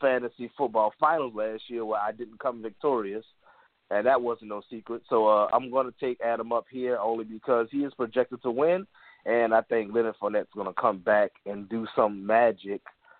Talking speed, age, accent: 200 wpm, 20-39, American